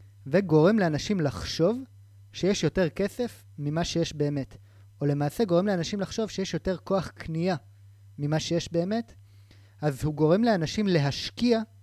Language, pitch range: Hebrew, 135-185 Hz